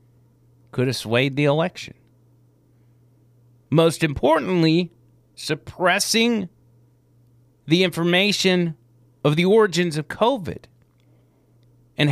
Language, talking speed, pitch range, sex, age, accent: English, 80 wpm, 120-170 Hz, male, 40-59, American